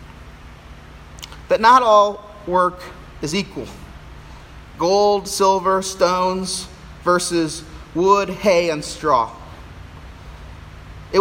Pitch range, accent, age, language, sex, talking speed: 140-200 Hz, American, 30-49, English, male, 80 wpm